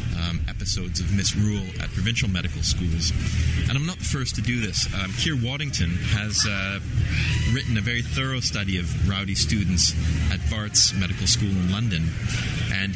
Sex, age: male, 30-49